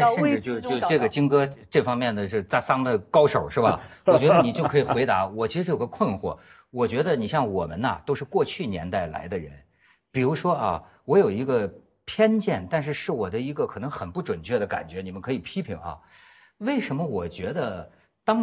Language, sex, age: Chinese, male, 50-69